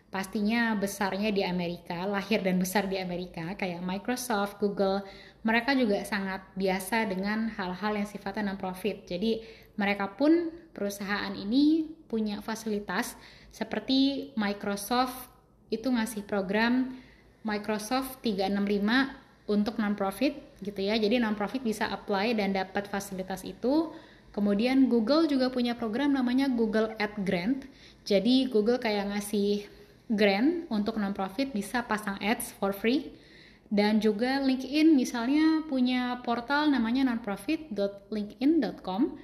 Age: 10-29